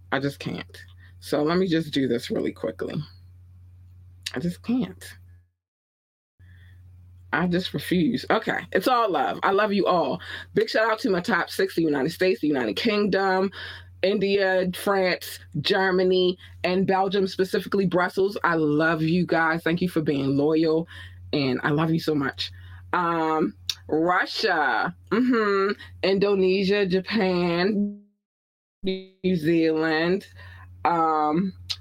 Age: 20-39